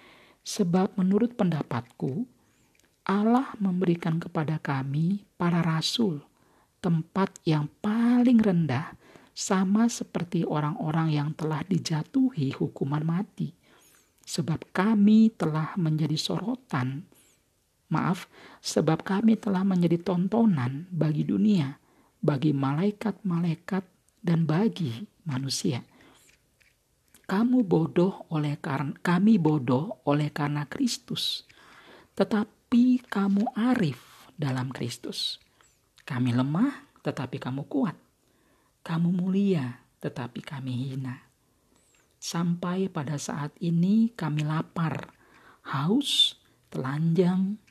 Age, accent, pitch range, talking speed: 50-69, native, 150-200 Hz, 90 wpm